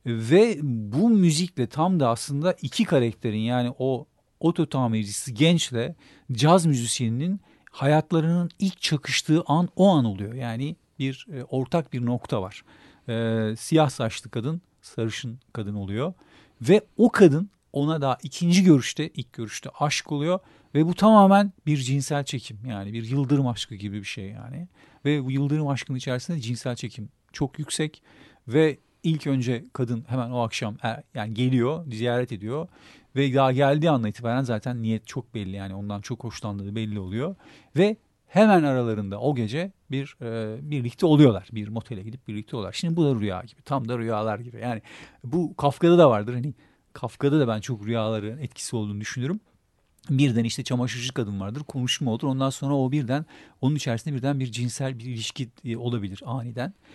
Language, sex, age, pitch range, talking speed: Turkish, male, 50-69, 115-155 Hz, 160 wpm